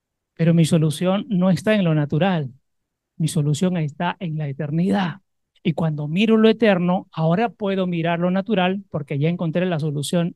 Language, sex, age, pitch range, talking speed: Spanish, male, 40-59, 155-195 Hz, 170 wpm